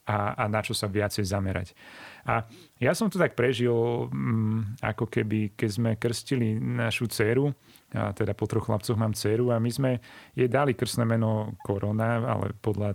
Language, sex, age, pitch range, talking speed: Slovak, male, 30-49, 105-120 Hz, 160 wpm